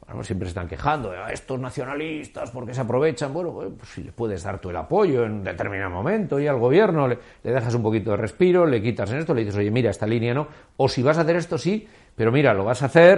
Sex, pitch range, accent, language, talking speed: male, 115-170 Hz, Spanish, Spanish, 265 wpm